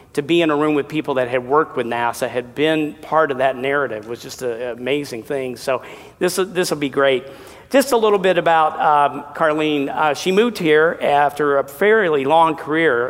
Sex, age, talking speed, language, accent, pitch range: male, 50-69, 205 wpm, English, American, 135-170 Hz